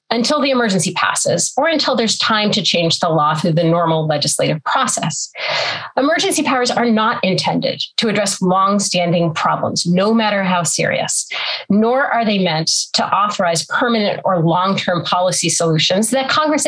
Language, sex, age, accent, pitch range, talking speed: English, female, 30-49, American, 170-230 Hz, 160 wpm